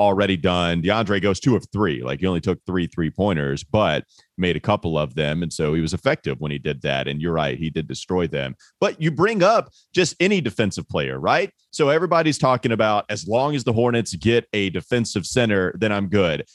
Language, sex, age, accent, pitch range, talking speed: English, male, 30-49, American, 95-160 Hz, 220 wpm